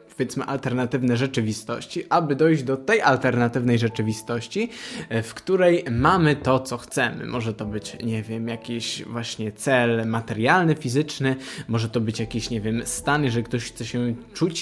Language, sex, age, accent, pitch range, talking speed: Polish, male, 20-39, native, 120-160 Hz, 150 wpm